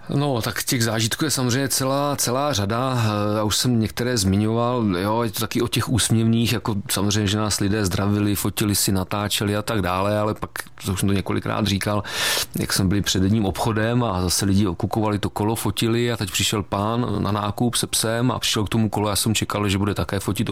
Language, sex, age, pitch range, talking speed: Czech, male, 40-59, 100-115 Hz, 215 wpm